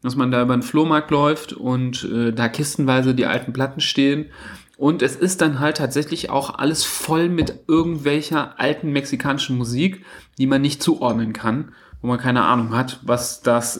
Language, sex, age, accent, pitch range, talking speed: German, male, 40-59, German, 130-165 Hz, 180 wpm